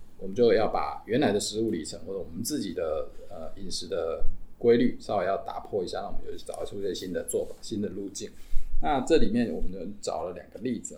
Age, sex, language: 20-39, male, Chinese